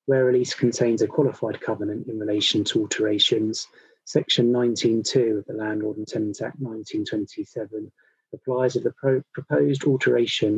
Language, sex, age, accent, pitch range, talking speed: English, male, 30-49, British, 110-140 Hz, 145 wpm